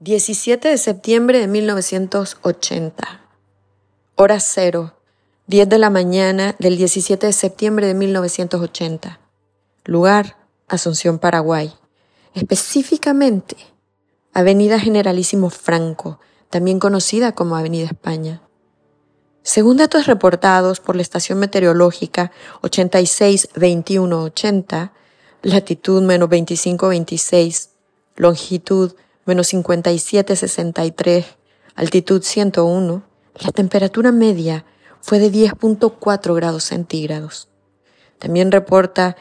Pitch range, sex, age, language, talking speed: 170-200 Hz, female, 30-49, Spanish, 85 wpm